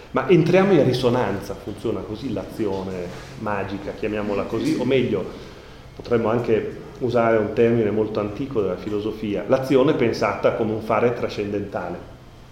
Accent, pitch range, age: native, 105-130 Hz, 30-49